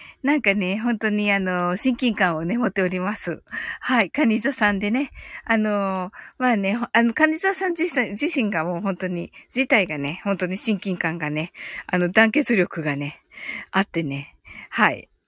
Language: Japanese